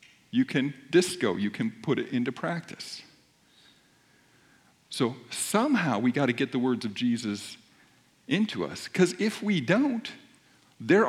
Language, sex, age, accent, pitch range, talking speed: English, male, 50-69, American, 155-220 Hz, 140 wpm